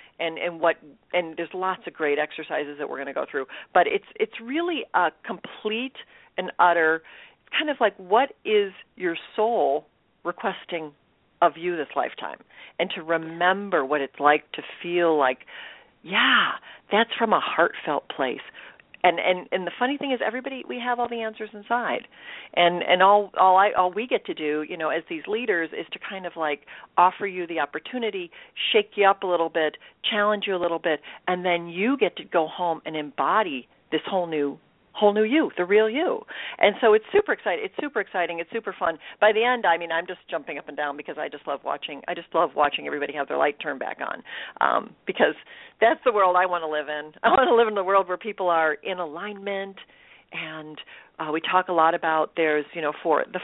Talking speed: 210 wpm